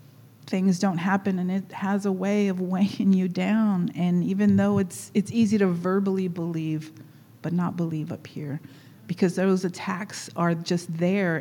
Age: 40-59